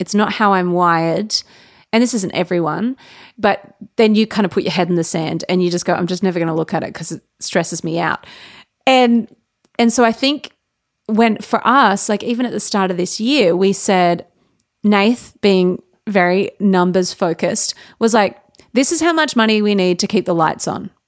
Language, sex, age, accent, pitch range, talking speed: English, female, 30-49, Australian, 180-220 Hz, 210 wpm